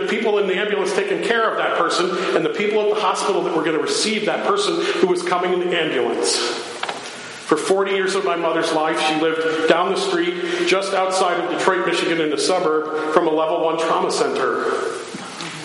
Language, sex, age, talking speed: English, male, 40-59, 205 wpm